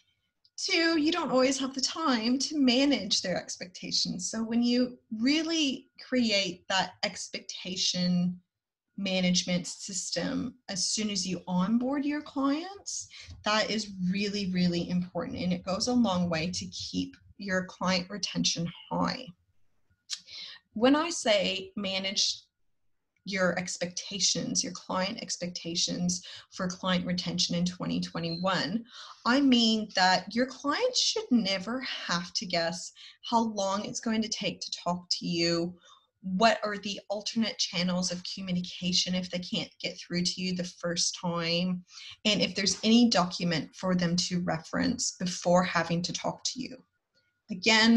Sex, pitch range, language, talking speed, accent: female, 180-230 Hz, English, 140 wpm, American